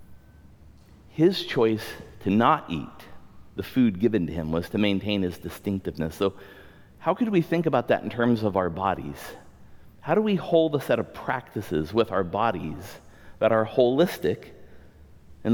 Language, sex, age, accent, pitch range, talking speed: English, male, 50-69, American, 80-120 Hz, 160 wpm